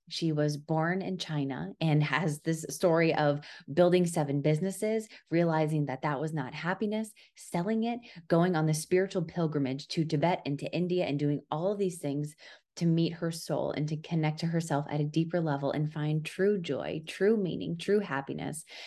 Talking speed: 185 wpm